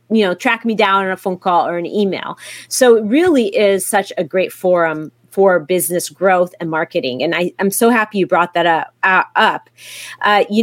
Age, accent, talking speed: 30-49, American, 210 wpm